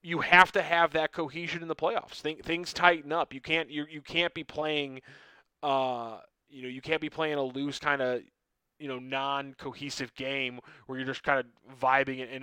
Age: 20-39